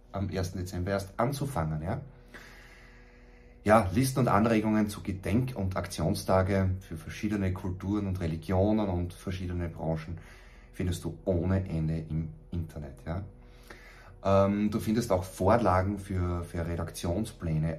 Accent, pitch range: German, 85-100 Hz